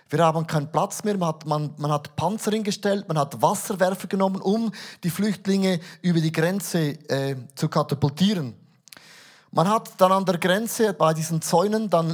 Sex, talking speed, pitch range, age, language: male, 175 wpm, 160-200 Hz, 30-49, German